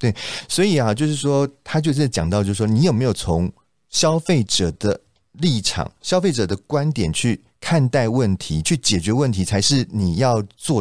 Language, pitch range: Chinese, 95-145 Hz